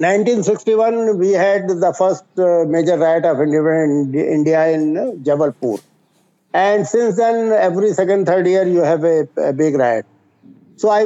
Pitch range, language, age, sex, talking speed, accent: 165-215 Hz, English, 60-79, male, 155 wpm, Indian